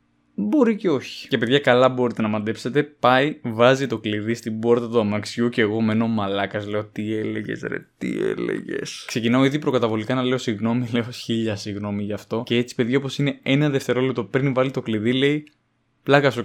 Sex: male